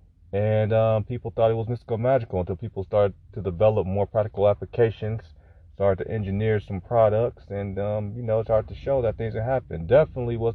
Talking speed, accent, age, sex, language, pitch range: 200 wpm, American, 30-49, male, English, 90-110 Hz